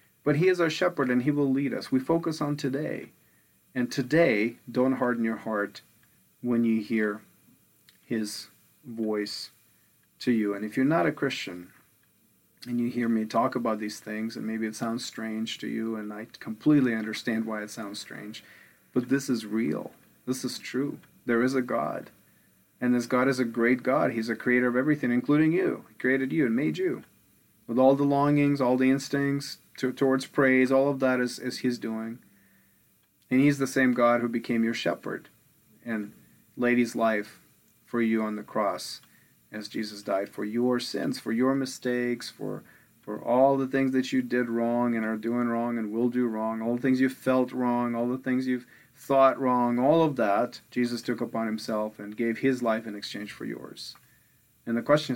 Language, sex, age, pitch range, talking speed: English, male, 40-59, 115-135 Hz, 195 wpm